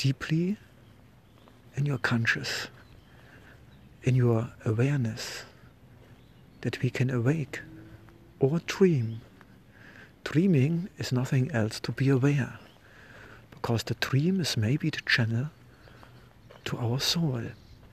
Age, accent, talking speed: 60-79, German, 100 wpm